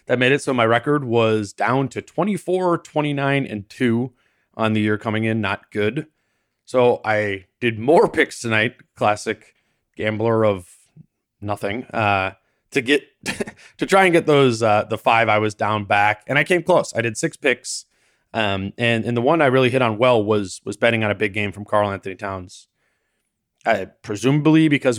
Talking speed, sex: 185 wpm, male